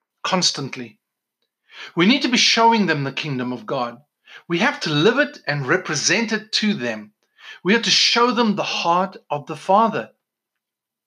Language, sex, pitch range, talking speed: English, male, 145-210 Hz, 170 wpm